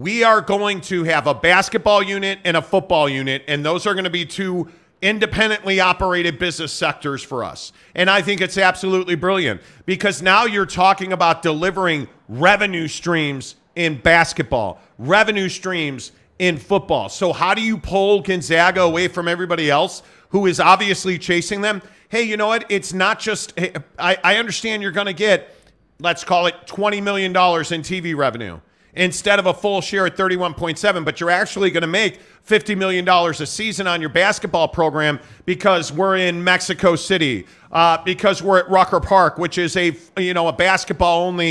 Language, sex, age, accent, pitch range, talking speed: English, male, 40-59, American, 170-195 Hz, 175 wpm